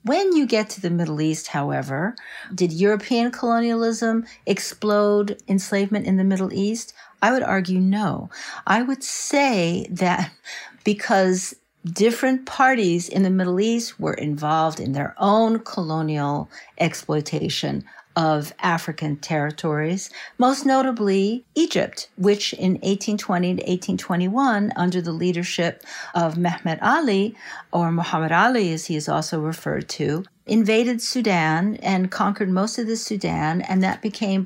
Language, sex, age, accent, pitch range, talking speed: English, female, 50-69, American, 165-215 Hz, 130 wpm